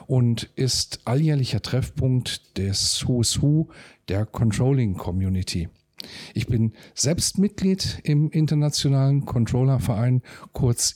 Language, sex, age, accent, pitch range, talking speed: German, male, 50-69, German, 105-145 Hz, 100 wpm